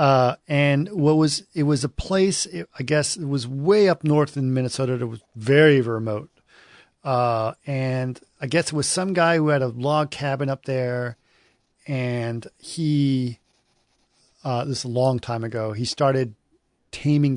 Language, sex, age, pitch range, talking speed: English, male, 40-59, 115-145 Hz, 175 wpm